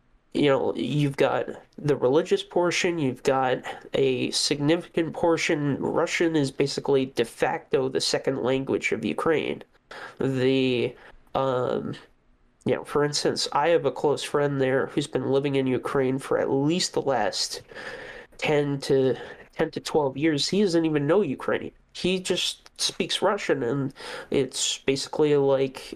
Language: English